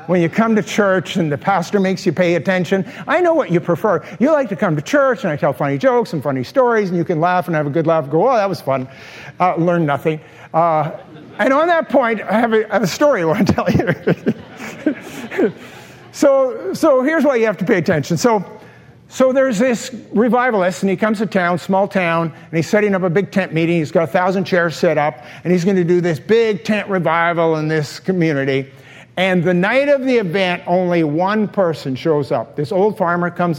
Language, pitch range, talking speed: English, 165-215 Hz, 230 wpm